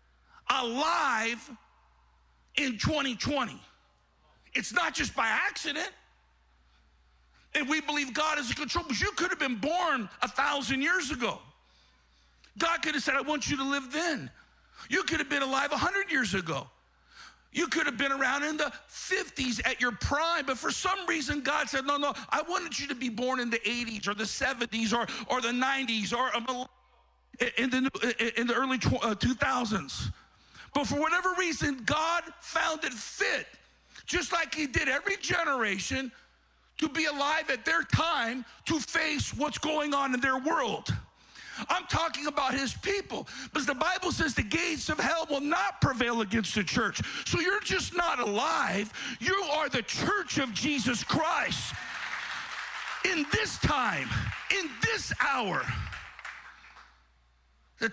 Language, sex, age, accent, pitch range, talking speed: English, male, 50-69, American, 230-315 Hz, 155 wpm